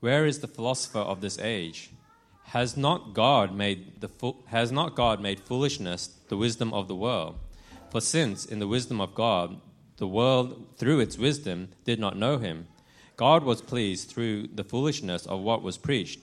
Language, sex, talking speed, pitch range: English, male, 180 wpm, 95-120 Hz